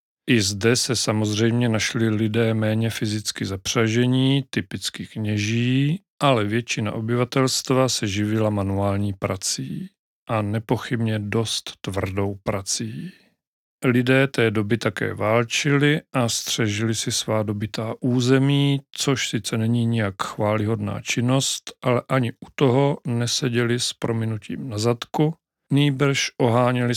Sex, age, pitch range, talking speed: male, 40-59, 110-125 Hz, 115 wpm